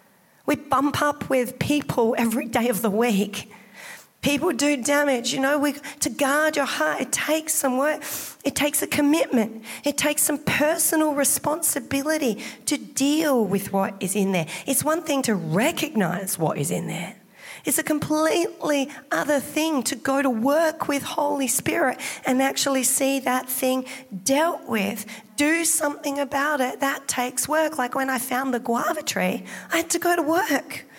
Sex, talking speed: female, 170 wpm